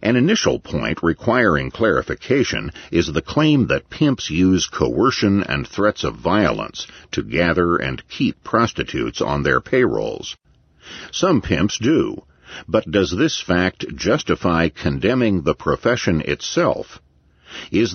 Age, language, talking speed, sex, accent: 50-69, English, 125 wpm, male, American